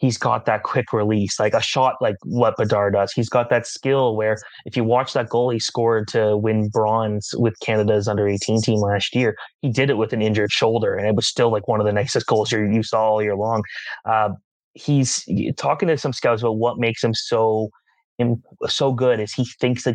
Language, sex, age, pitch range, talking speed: English, male, 20-39, 110-125 Hz, 220 wpm